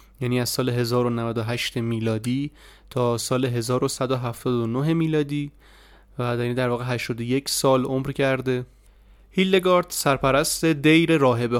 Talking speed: 105 wpm